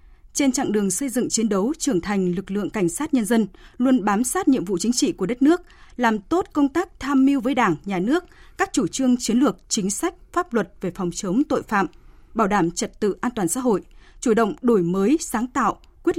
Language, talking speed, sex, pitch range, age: Vietnamese, 235 wpm, female, 195-270 Hz, 20-39